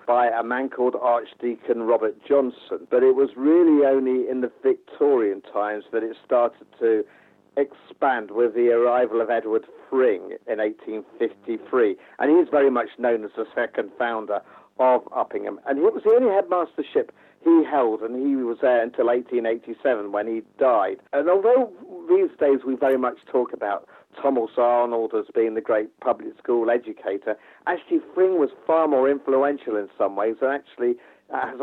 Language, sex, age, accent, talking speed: English, male, 50-69, British, 165 wpm